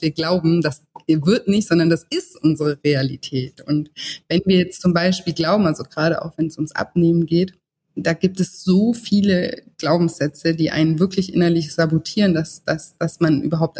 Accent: German